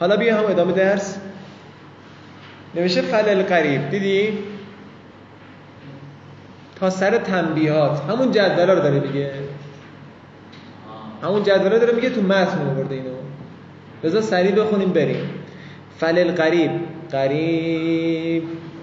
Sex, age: male, 20-39